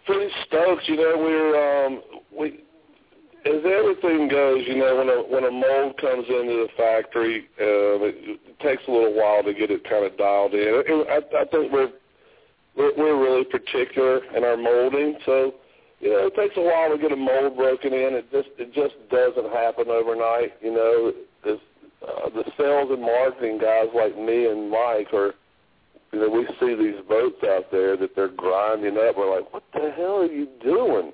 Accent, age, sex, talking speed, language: American, 50-69, male, 195 wpm, English